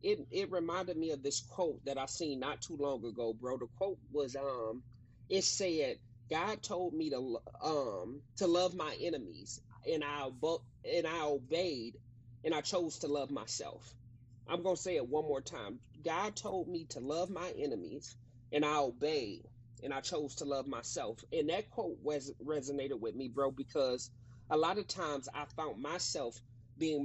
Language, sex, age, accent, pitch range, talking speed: English, male, 30-49, American, 125-165 Hz, 180 wpm